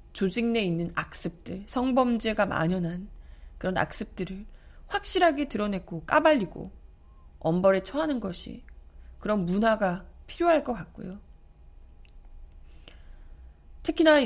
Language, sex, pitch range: Korean, female, 170-265 Hz